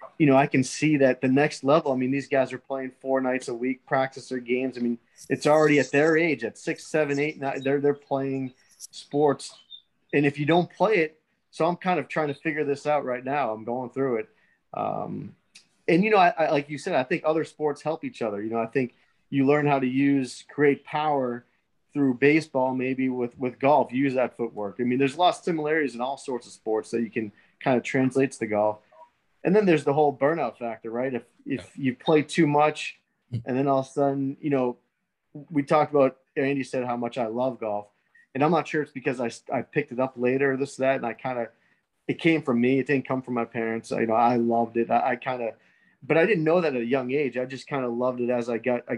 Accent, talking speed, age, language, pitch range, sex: American, 250 wpm, 30-49, English, 125-145 Hz, male